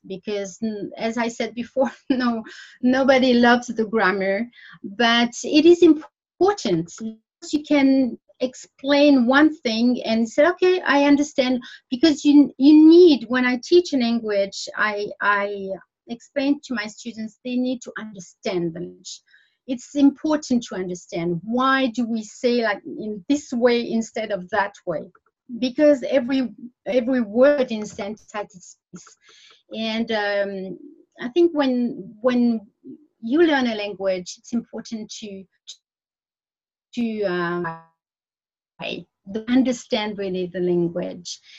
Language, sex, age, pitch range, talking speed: English, female, 30-49, 200-270 Hz, 125 wpm